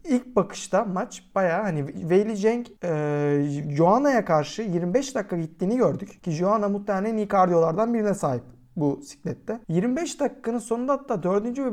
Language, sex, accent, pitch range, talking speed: Turkish, male, native, 165-225 Hz, 145 wpm